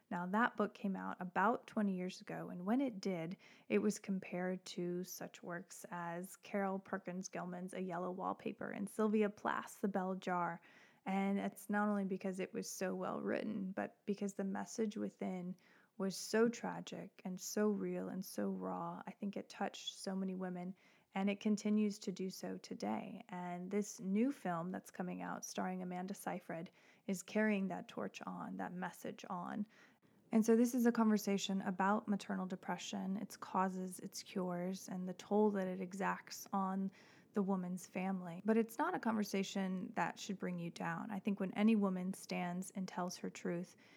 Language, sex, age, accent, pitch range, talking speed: English, female, 20-39, American, 180-210 Hz, 175 wpm